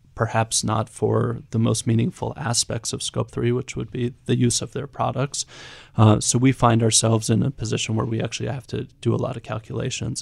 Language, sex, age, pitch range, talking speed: English, male, 30-49, 115-130 Hz, 210 wpm